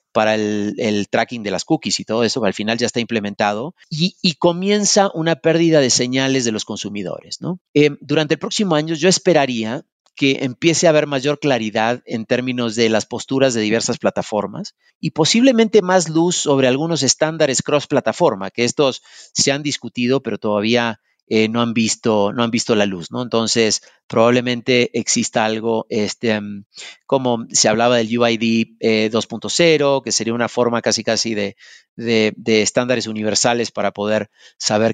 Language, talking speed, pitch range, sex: Spanish, 170 wpm, 110-150 Hz, male